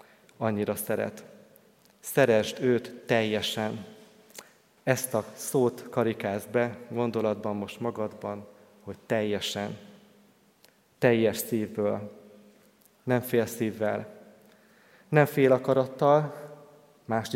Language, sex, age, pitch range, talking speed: Hungarian, male, 30-49, 110-130 Hz, 85 wpm